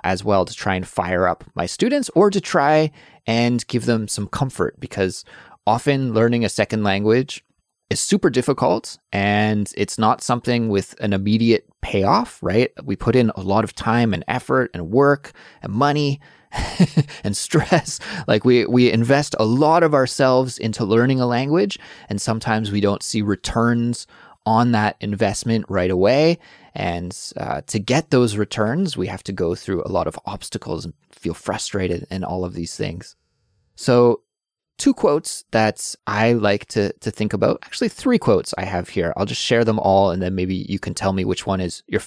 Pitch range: 100-130 Hz